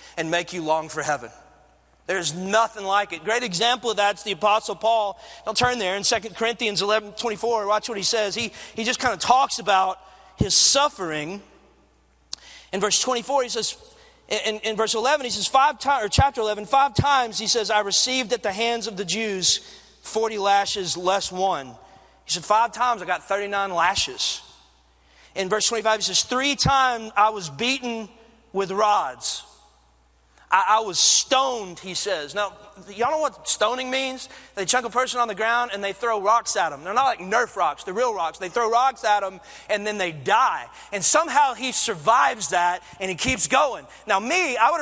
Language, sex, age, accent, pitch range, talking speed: English, male, 40-59, American, 195-245 Hz, 195 wpm